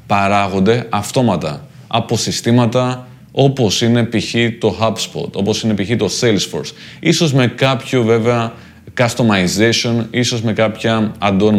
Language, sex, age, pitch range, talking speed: Greek, male, 30-49, 100-125 Hz, 120 wpm